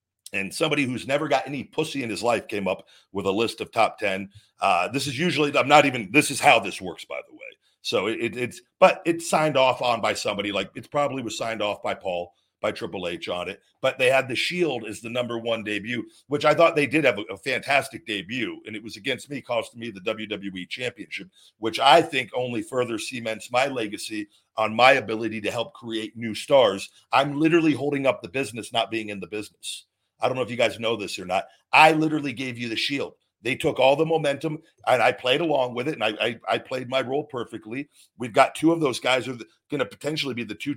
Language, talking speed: English, 235 wpm